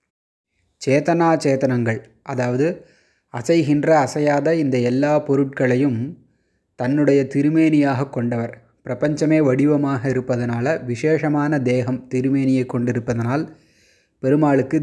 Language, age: Tamil, 20-39